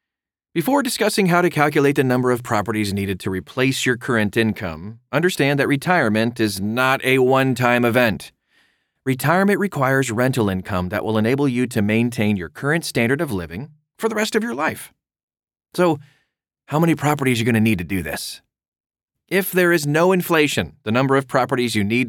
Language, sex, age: English, male, 30-49